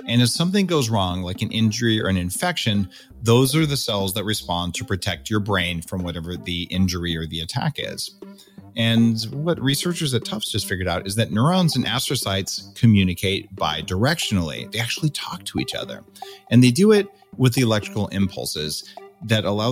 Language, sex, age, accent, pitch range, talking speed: English, male, 40-59, American, 100-150 Hz, 185 wpm